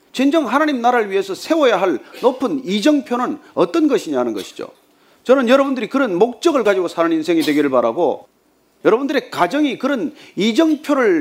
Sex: male